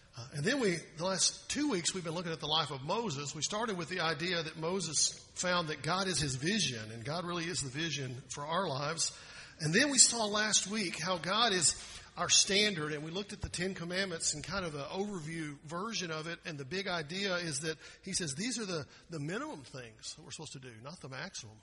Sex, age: male, 50-69